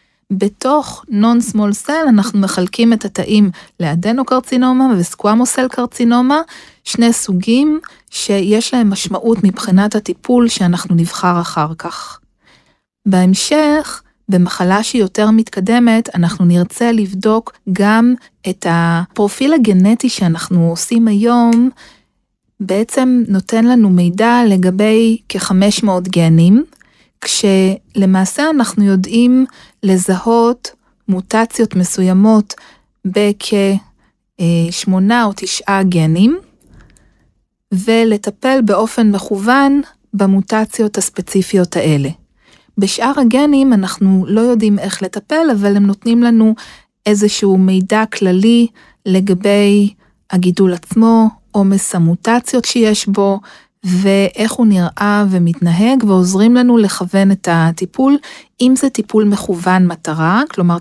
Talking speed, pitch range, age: 95 wpm, 185-230 Hz, 40-59